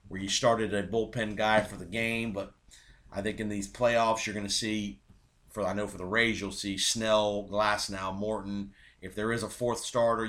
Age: 40-59